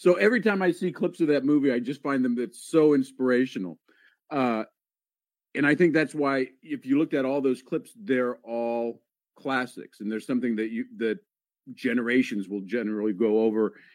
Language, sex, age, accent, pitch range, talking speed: English, male, 50-69, American, 115-140 Hz, 185 wpm